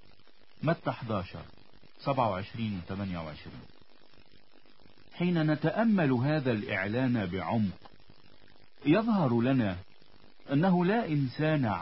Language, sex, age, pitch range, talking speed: Italian, male, 50-69, 105-160 Hz, 60 wpm